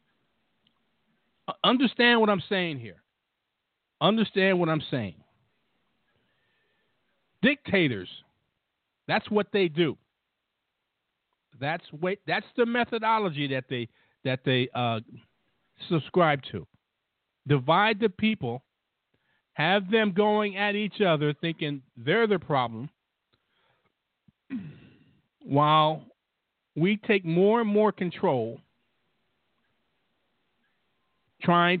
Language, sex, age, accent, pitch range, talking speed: English, male, 50-69, American, 135-190 Hz, 90 wpm